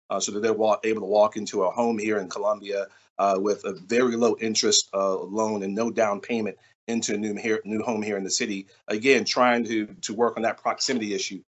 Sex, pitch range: male, 105-120 Hz